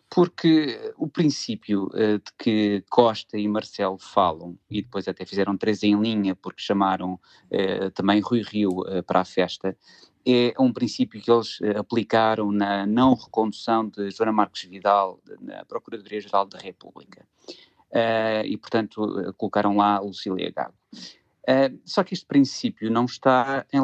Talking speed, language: 150 wpm, Portuguese